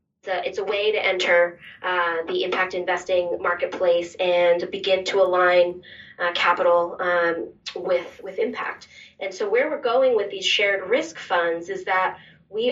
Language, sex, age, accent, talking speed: English, female, 20-39, American, 160 wpm